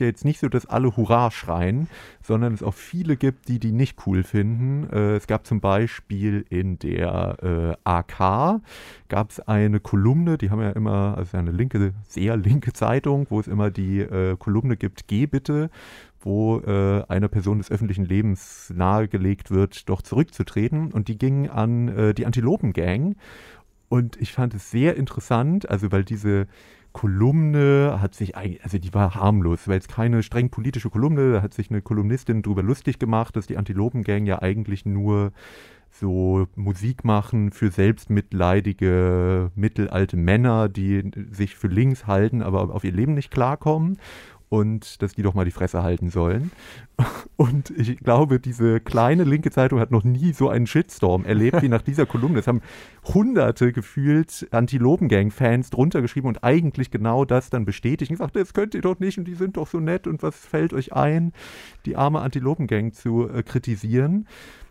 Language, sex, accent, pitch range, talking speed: German, male, German, 100-130 Hz, 170 wpm